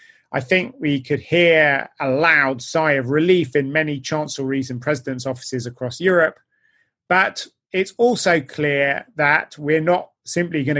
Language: English